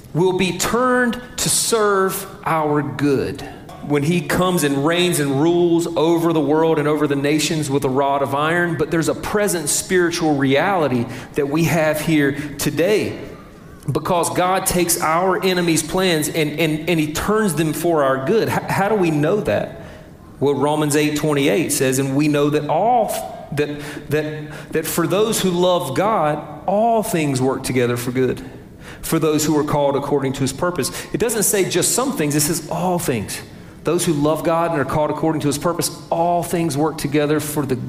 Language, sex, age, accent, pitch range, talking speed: English, male, 40-59, American, 140-170 Hz, 185 wpm